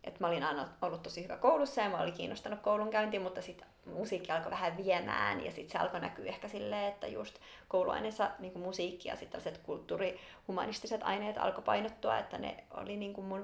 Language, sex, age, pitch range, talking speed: Finnish, female, 30-49, 185-225 Hz, 180 wpm